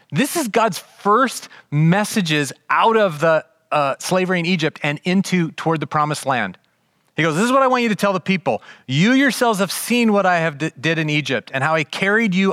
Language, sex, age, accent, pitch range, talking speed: English, male, 30-49, American, 120-185 Hz, 215 wpm